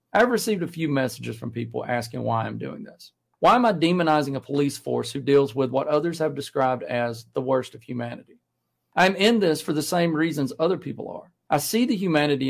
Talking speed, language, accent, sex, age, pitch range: 215 wpm, English, American, male, 40-59, 125-160 Hz